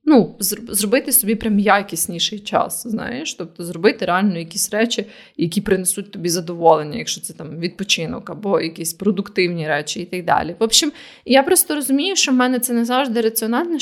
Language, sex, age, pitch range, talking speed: Ukrainian, female, 20-39, 195-235 Hz, 165 wpm